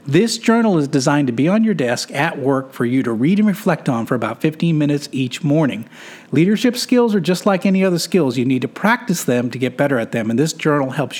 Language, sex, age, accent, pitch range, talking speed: English, male, 40-59, American, 130-180 Hz, 245 wpm